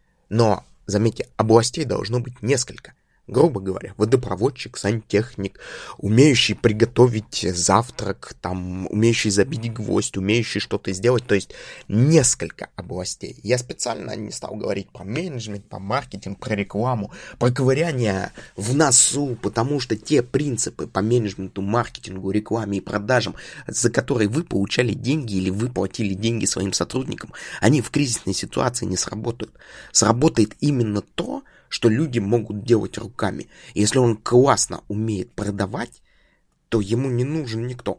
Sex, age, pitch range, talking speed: male, 20-39, 100-125 Hz, 135 wpm